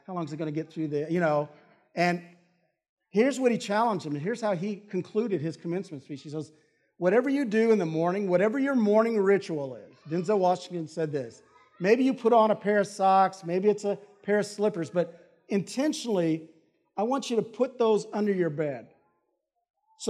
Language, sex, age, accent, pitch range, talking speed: English, male, 50-69, American, 150-210 Hz, 205 wpm